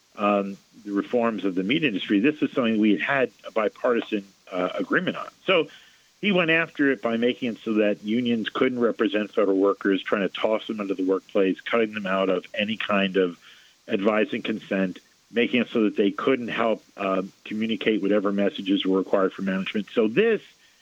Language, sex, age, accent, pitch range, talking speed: English, male, 50-69, American, 95-125 Hz, 190 wpm